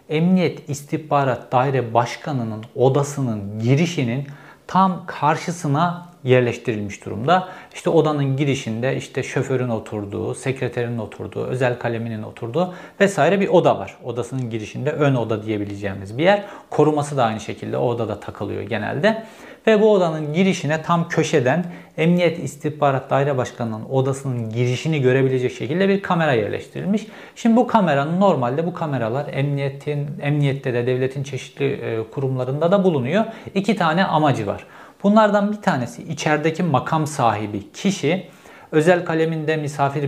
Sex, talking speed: male, 125 wpm